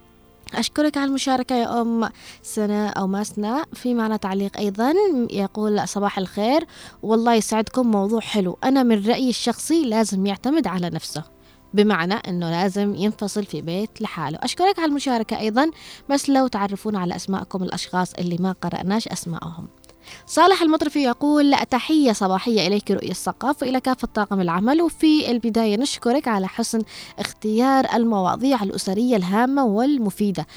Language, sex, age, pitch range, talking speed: Arabic, female, 20-39, 195-245 Hz, 140 wpm